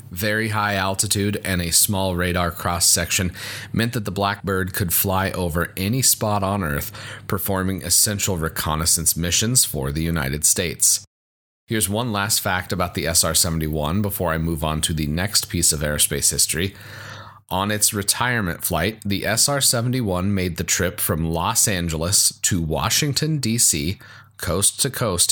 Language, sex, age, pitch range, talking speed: English, male, 30-49, 85-110 Hz, 145 wpm